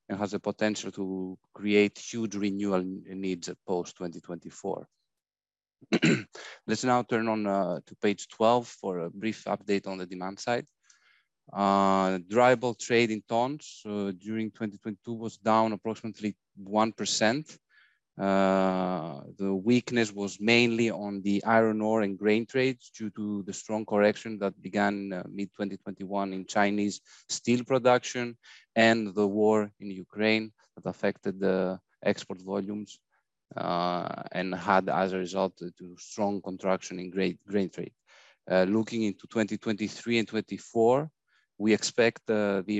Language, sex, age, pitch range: English, male, 30-49, 100-110 Hz